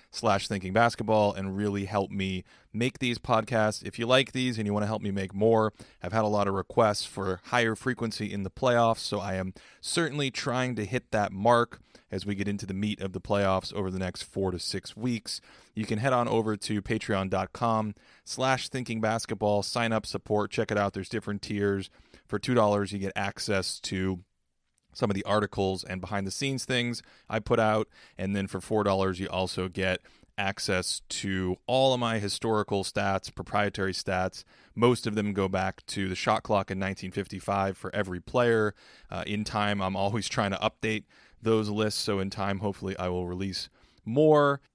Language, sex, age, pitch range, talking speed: English, male, 30-49, 95-115 Hz, 190 wpm